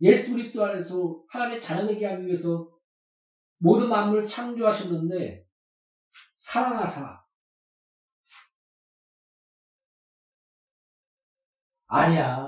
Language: Korean